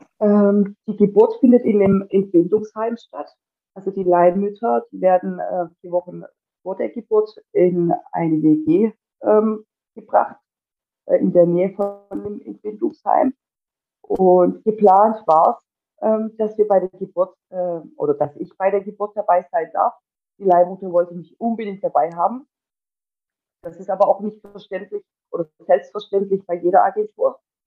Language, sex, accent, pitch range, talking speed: German, female, German, 175-215 Hz, 145 wpm